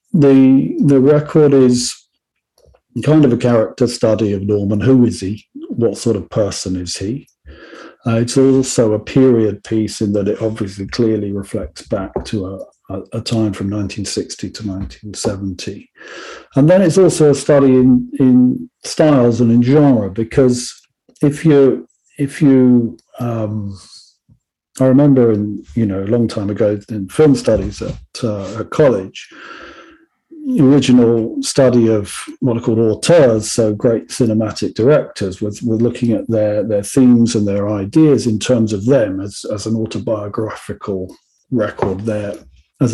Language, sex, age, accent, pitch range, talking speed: English, male, 50-69, British, 105-135 Hz, 150 wpm